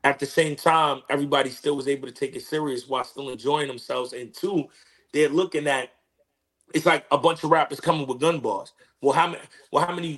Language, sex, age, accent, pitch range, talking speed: English, male, 30-49, American, 135-170 Hz, 210 wpm